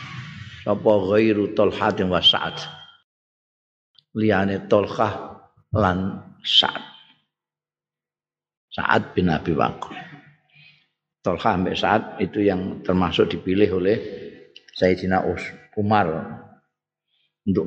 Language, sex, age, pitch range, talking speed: Indonesian, male, 50-69, 95-125 Hz, 80 wpm